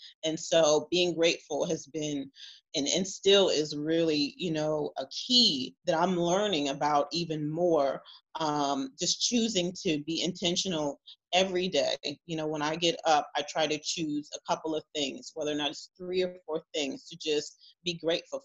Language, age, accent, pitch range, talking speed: English, 30-49, American, 150-180 Hz, 180 wpm